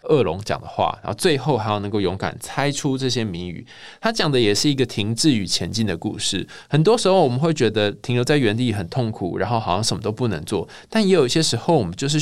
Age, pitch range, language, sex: 20-39, 110-155 Hz, Chinese, male